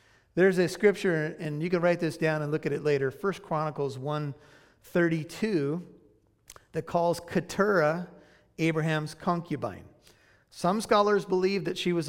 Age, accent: 40-59, American